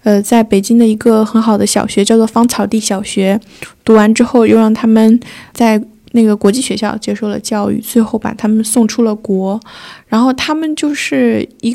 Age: 10-29